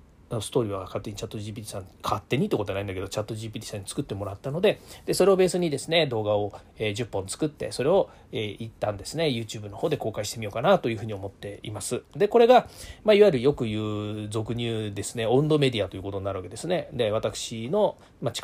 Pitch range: 105-150 Hz